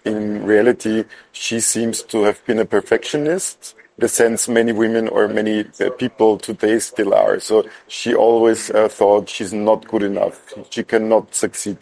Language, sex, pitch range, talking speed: English, male, 105-115 Hz, 155 wpm